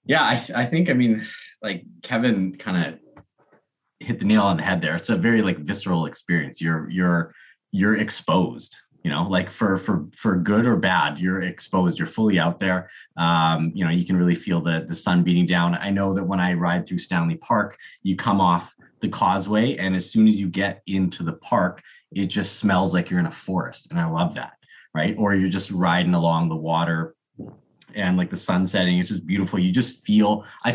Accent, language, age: American, English, 30-49